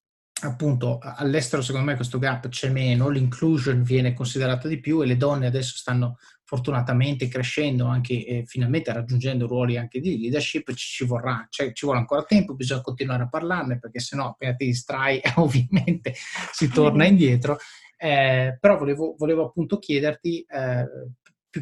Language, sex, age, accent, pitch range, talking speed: Italian, male, 30-49, native, 125-145 Hz, 160 wpm